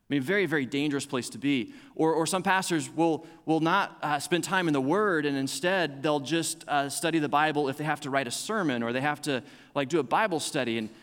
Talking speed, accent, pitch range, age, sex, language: 250 wpm, American, 135-165 Hz, 30-49, male, English